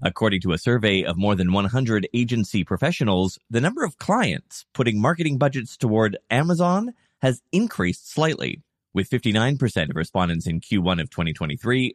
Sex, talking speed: male, 150 wpm